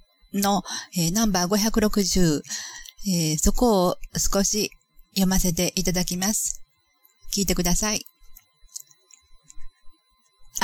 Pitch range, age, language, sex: 180-220 Hz, 40-59, Japanese, female